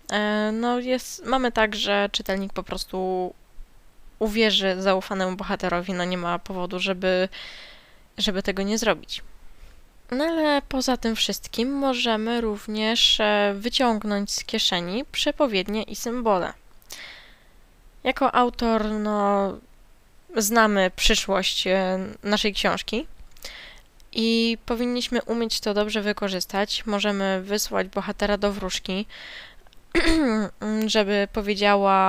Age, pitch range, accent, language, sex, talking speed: 10-29, 195-225 Hz, native, Polish, female, 100 wpm